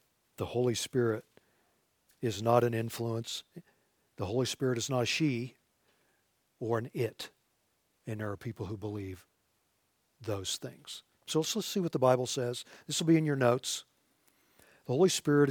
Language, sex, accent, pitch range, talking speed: English, male, American, 115-140 Hz, 165 wpm